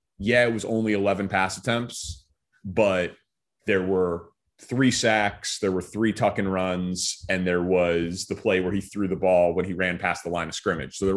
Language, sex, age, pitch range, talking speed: English, male, 30-49, 95-120 Hz, 200 wpm